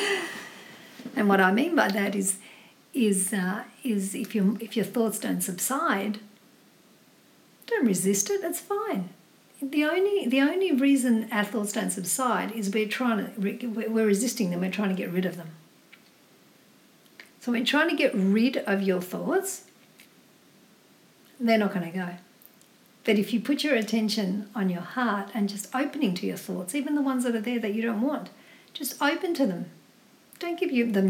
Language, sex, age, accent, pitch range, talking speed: English, female, 60-79, Australian, 195-255 Hz, 170 wpm